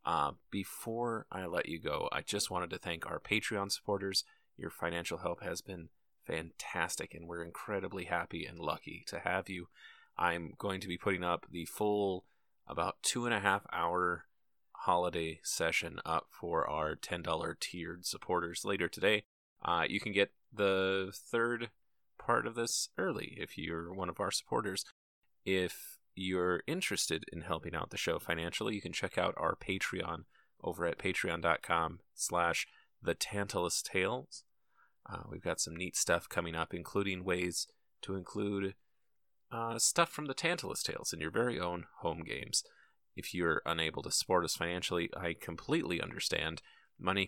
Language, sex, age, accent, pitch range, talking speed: English, male, 30-49, American, 85-105 Hz, 160 wpm